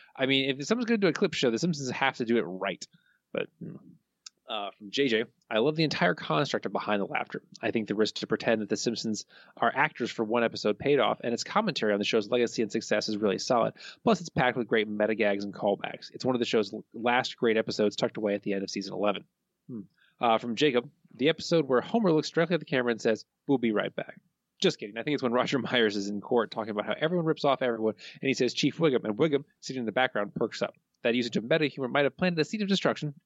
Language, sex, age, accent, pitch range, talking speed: English, male, 20-39, American, 115-160 Hz, 260 wpm